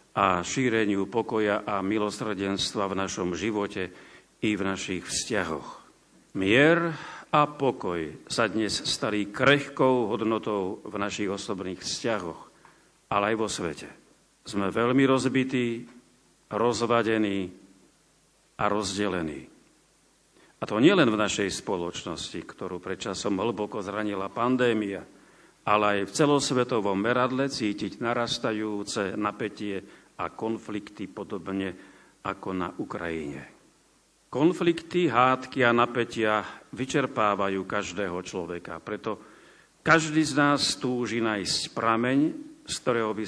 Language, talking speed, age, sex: Slovak, 105 wpm, 50-69, male